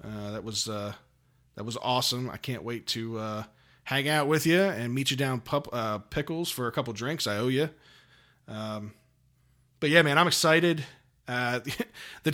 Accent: American